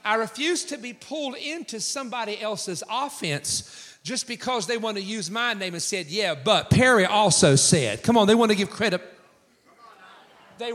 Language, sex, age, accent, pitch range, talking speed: English, male, 40-59, American, 195-250 Hz, 180 wpm